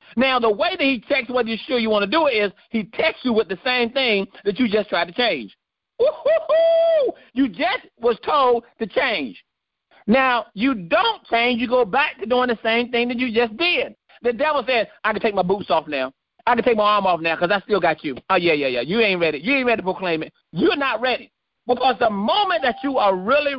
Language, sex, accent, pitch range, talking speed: English, male, American, 210-285 Hz, 245 wpm